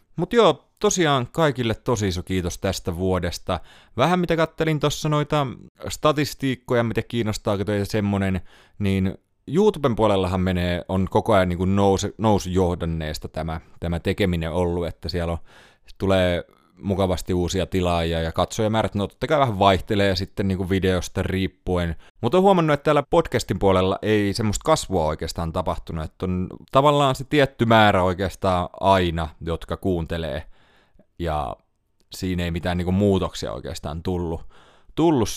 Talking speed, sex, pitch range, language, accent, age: 145 wpm, male, 90-110 Hz, Finnish, native, 30-49